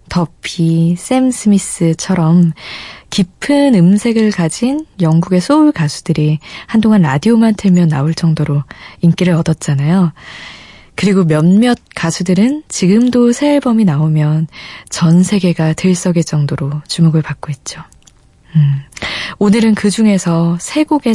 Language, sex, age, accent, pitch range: Korean, female, 20-39, native, 155-205 Hz